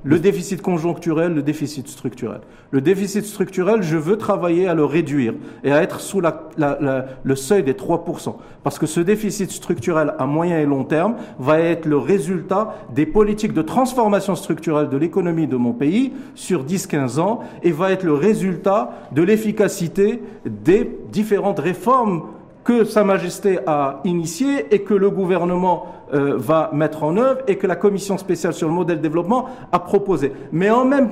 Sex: male